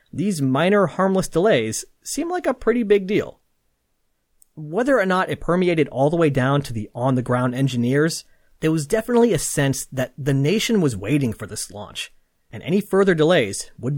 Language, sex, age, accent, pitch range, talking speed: English, male, 30-49, American, 130-180 Hz, 180 wpm